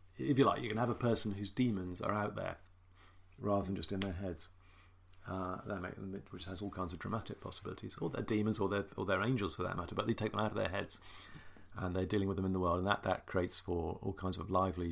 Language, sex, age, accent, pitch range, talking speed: English, male, 50-69, British, 90-105 Hz, 265 wpm